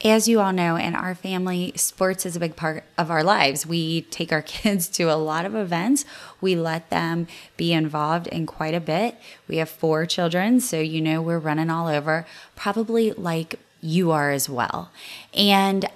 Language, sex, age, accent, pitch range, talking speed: English, female, 20-39, American, 155-190 Hz, 190 wpm